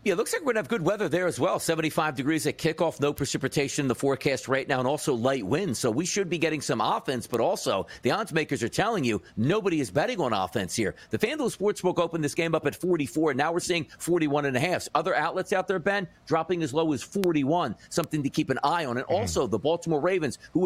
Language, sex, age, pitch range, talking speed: English, male, 50-69, 155-205 Hz, 245 wpm